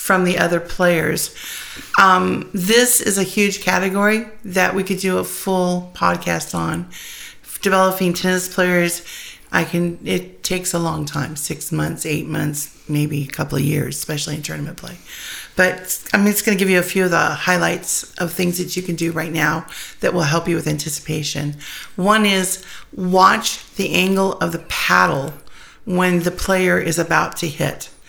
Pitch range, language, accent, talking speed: 155-190 Hz, English, American, 175 wpm